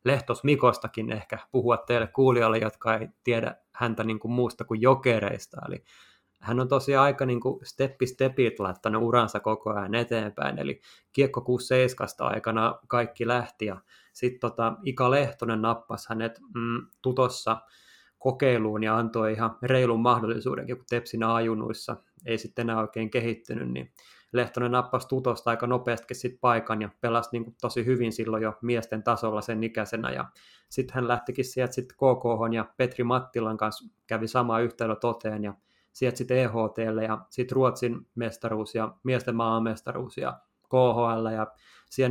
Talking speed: 140 wpm